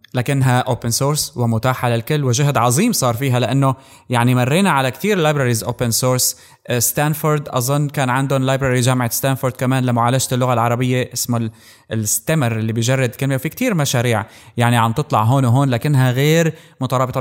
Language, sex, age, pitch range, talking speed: Arabic, male, 20-39, 120-140 Hz, 155 wpm